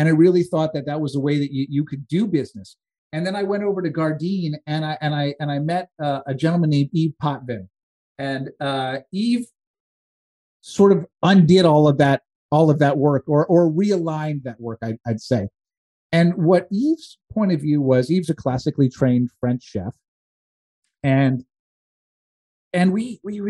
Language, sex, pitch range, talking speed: English, male, 130-175 Hz, 185 wpm